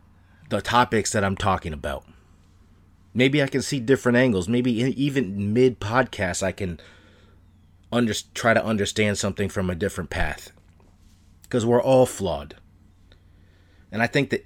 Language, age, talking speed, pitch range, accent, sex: English, 30-49, 135 wpm, 90-120 Hz, American, male